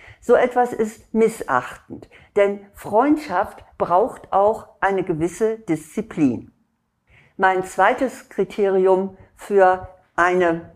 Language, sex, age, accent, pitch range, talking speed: German, female, 60-79, German, 170-210 Hz, 90 wpm